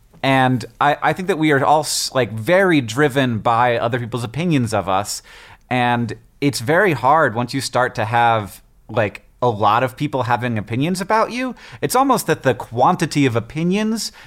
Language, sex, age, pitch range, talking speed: English, male, 30-49, 115-155 Hz, 175 wpm